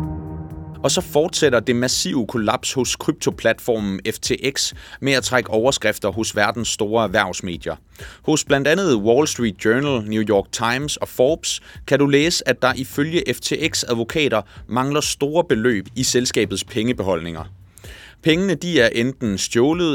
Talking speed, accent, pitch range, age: 140 wpm, native, 100-135 Hz, 30-49